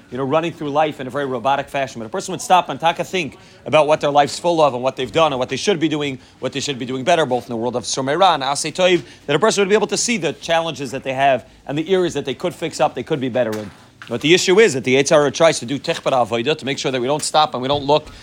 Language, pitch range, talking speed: English, 135-170 Hz, 315 wpm